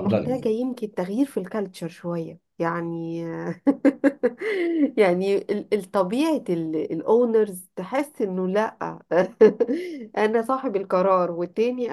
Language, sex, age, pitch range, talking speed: Arabic, female, 50-69, 195-270 Hz, 85 wpm